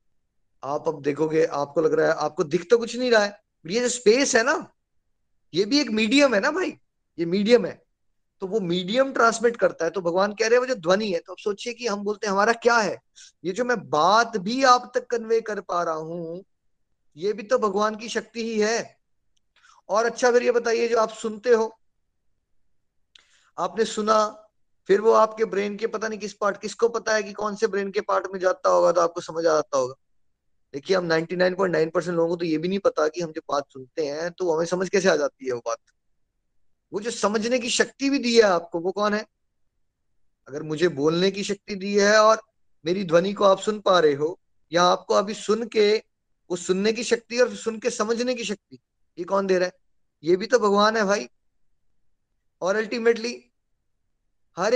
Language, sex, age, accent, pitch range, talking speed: Hindi, male, 20-39, native, 175-230 Hz, 185 wpm